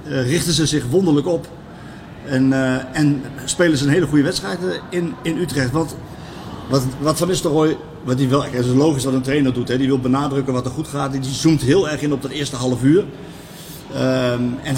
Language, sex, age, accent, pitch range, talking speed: Dutch, male, 50-69, Dutch, 125-155 Hz, 200 wpm